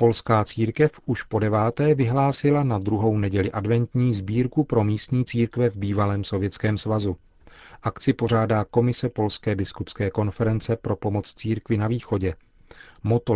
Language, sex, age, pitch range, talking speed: Czech, male, 40-59, 105-120 Hz, 135 wpm